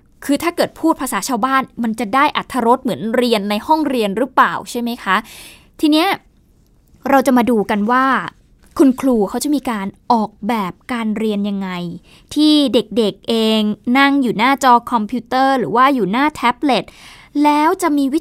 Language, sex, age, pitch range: Thai, female, 20-39, 210-280 Hz